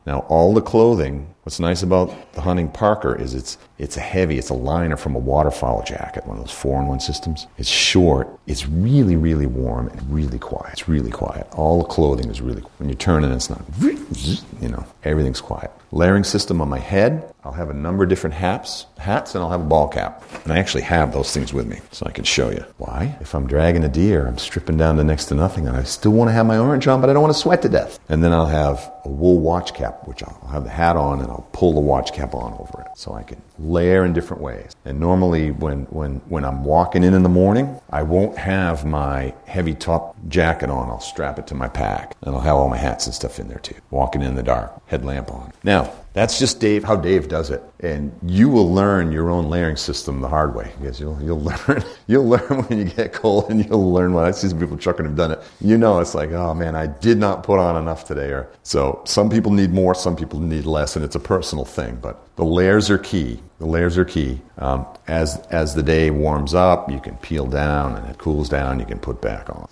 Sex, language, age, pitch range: male, English, 50-69, 70-90 Hz